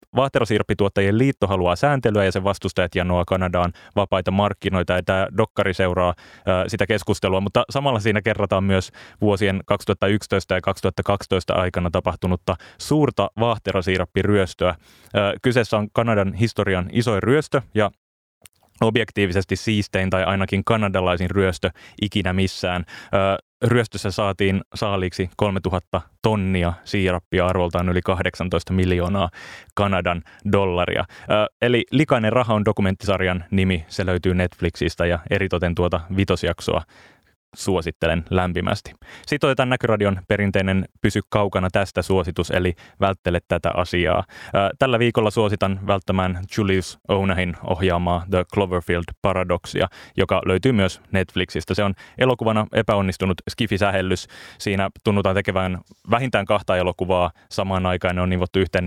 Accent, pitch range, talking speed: native, 90-105 Hz, 120 wpm